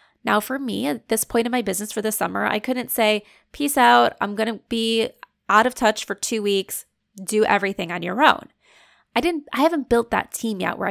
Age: 20-39